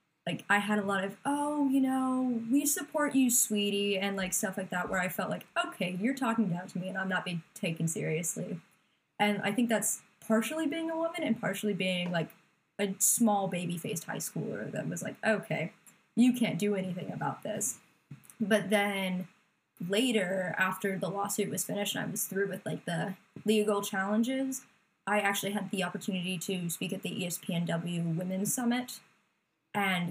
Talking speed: 180 wpm